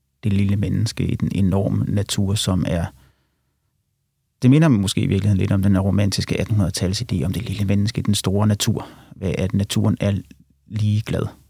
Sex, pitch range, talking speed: male, 95-115 Hz, 170 wpm